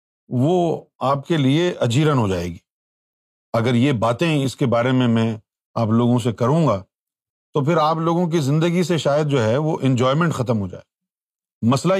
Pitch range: 125-190 Hz